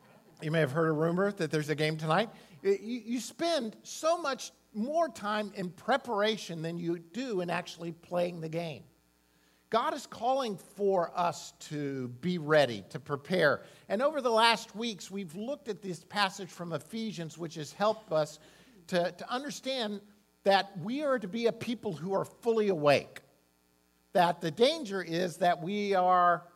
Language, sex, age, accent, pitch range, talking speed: English, male, 50-69, American, 160-215 Hz, 165 wpm